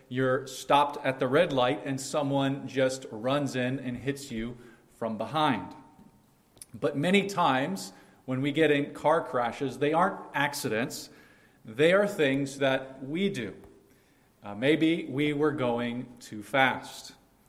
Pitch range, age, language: 125-150 Hz, 40-59, English